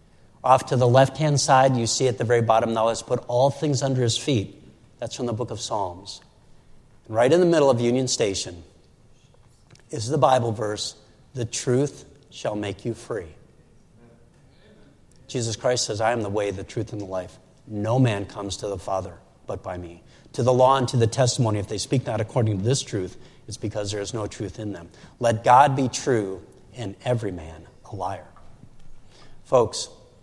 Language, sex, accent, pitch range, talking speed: English, male, American, 110-140 Hz, 190 wpm